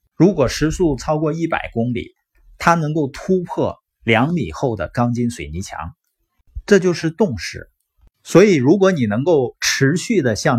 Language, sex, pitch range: Chinese, male, 100-150 Hz